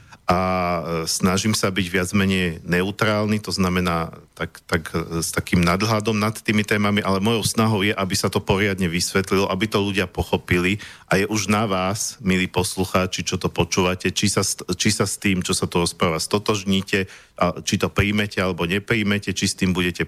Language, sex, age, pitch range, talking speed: Slovak, male, 40-59, 95-105 Hz, 180 wpm